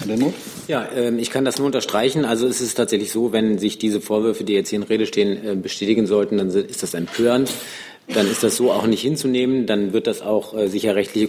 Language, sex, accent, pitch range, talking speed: German, male, German, 100-115 Hz, 215 wpm